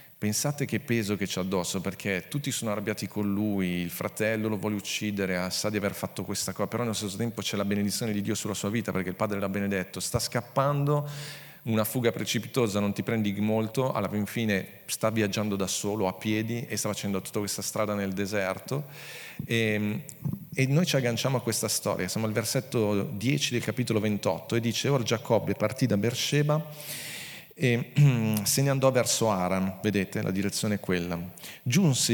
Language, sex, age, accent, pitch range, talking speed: Italian, male, 40-59, native, 100-130 Hz, 185 wpm